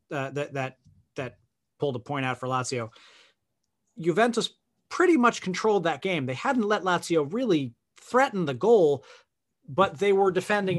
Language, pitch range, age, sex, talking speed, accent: English, 135-180 Hz, 30-49, male, 155 wpm, American